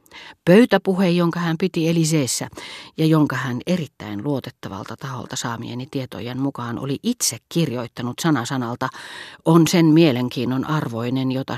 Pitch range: 125-170 Hz